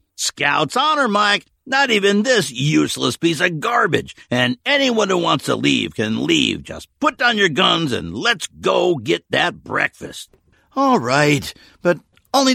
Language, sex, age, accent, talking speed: English, male, 50-69, American, 160 wpm